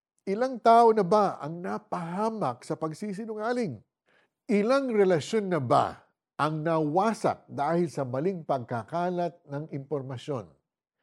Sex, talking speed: male, 110 wpm